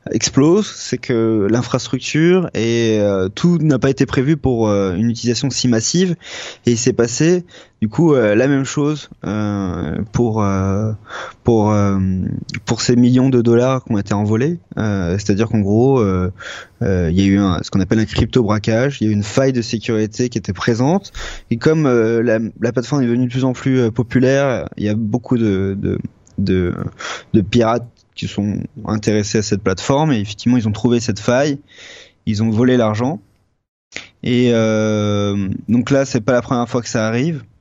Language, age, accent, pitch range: French, 20-39, French, 105-130 Hz